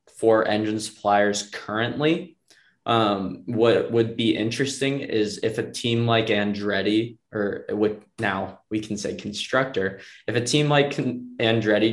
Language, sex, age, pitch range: English, male, 20-39, 100-115 Hz